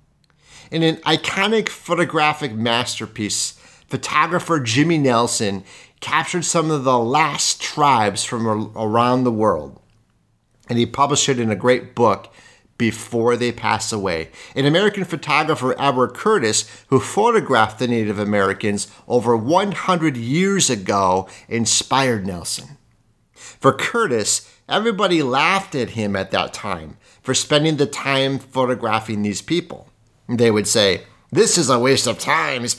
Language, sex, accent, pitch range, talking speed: English, male, American, 110-155 Hz, 130 wpm